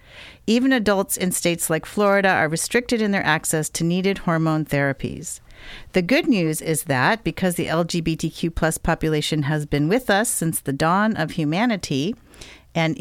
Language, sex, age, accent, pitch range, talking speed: English, female, 50-69, American, 155-205 Hz, 160 wpm